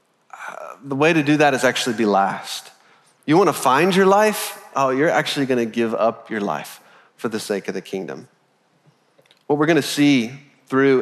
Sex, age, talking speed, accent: male, 30-49, 180 wpm, American